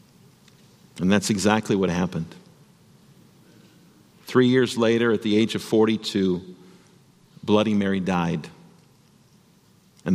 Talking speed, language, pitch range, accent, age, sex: 100 wpm, English, 110-150 Hz, American, 50-69, male